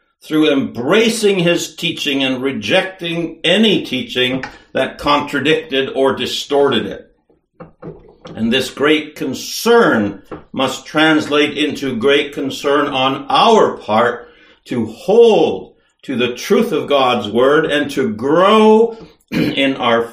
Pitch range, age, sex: 130-180 Hz, 60-79, male